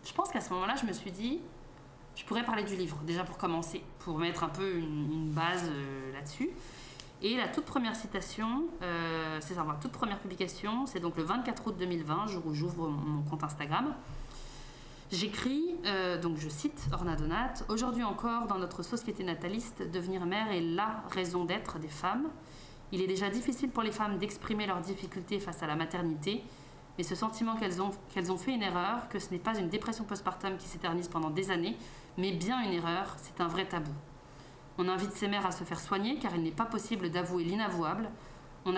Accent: French